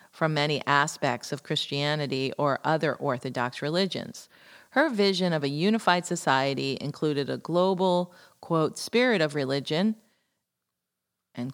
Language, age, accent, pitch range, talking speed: English, 40-59, American, 145-195 Hz, 120 wpm